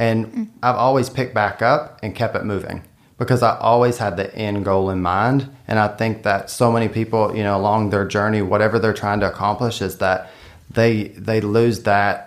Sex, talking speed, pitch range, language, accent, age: male, 205 wpm, 100-120 Hz, English, American, 30-49